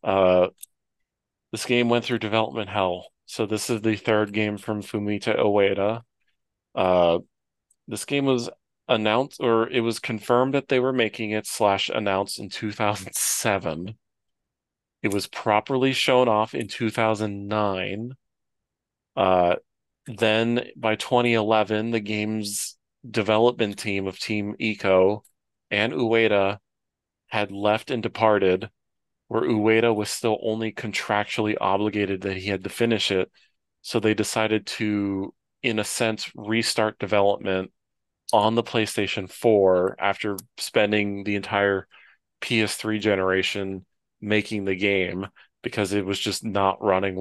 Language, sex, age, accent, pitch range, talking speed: English, male, 40-59, American, 100-115 Hz, 125 wpm